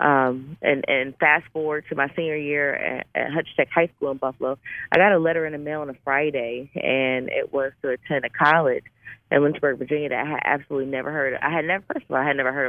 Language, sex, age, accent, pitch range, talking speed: English, female, 20-39, American, 130-155 Hz, 255 wpm